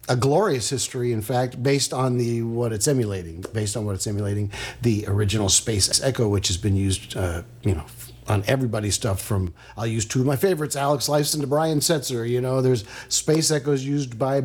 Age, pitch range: 50-69, 105-135 Hz